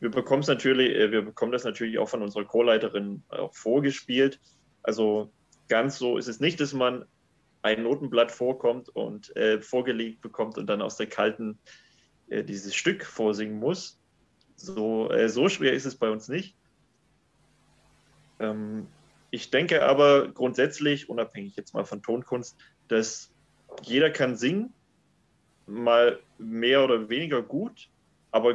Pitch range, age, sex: 110-135 Hz, 30-49, male